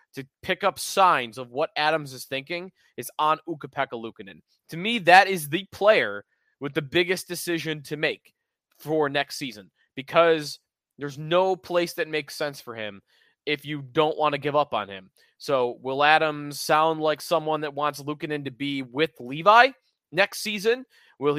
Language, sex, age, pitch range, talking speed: English, male, 20-39, 130-170 Hz, 175 wpm